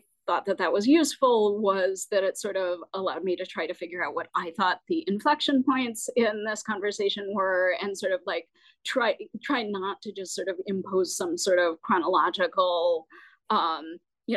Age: 30-49